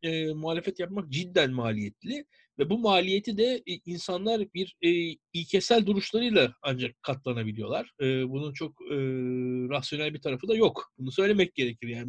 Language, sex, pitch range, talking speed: Turkish, male, 130-205 Hz, 150 wpm